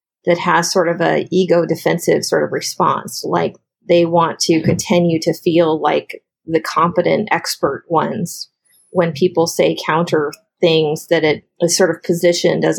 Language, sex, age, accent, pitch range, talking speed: English, female, 30-49, American, 170-190 Hz, 160 wpm